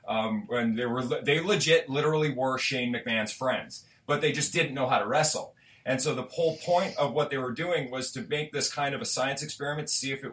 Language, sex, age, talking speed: English, male, 30-49, 240 wpm